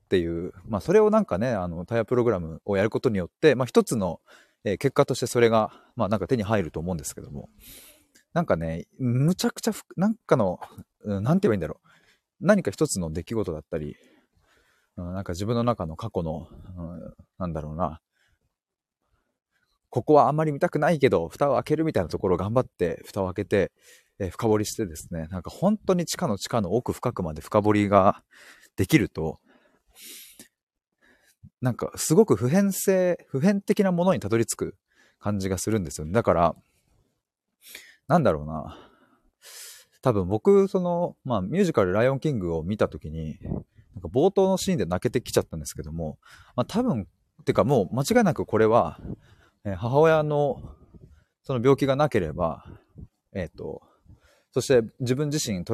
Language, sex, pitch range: Japanese, male, 95-145 Hz